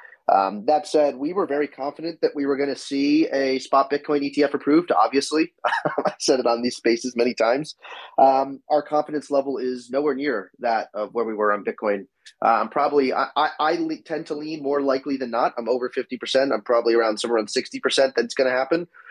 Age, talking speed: 20-39, 205 wpm